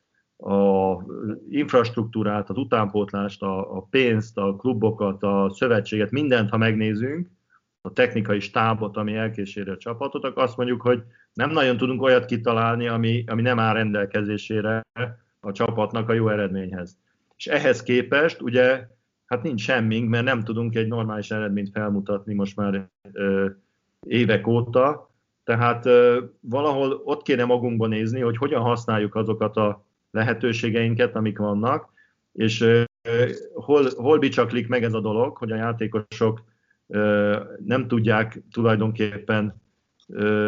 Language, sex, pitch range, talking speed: Hungarian, male, 105-125 Hz, 130 wpm